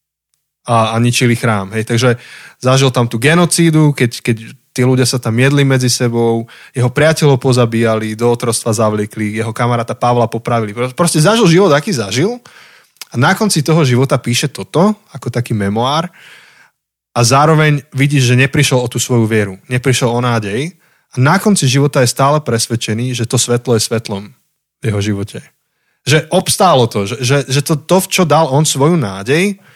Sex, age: male, 20-39